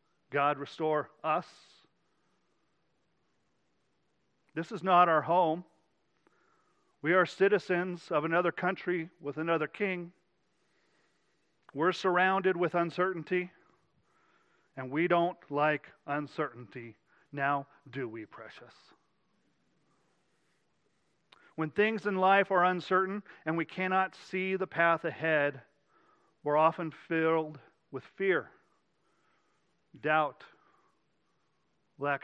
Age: 40-59